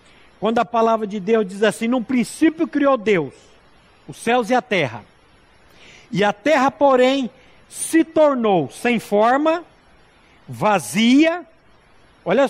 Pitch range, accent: 220-295 Hz, Brazilian